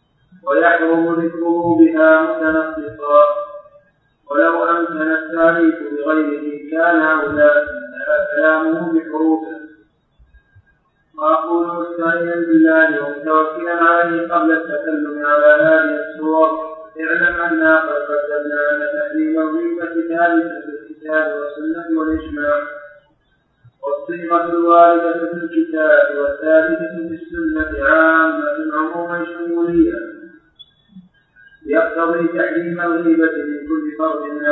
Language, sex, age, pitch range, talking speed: Arabic, male, 50-69, 150-170 Hz, 60 wpm